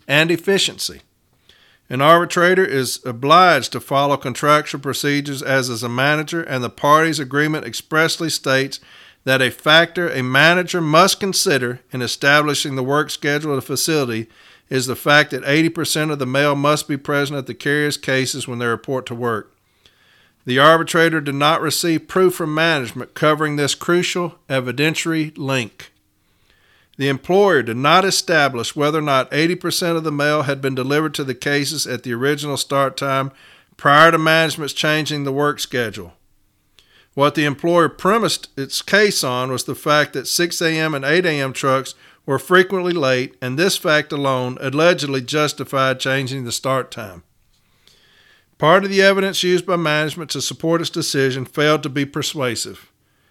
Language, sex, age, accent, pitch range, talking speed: English, male, 50-69, American, 130-160 Hz, 160 wpm